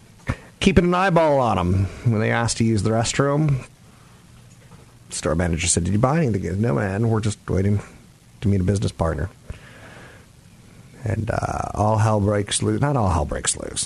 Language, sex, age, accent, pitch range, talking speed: English, male, 30-49, American, 95-115 Hz, 180 wpm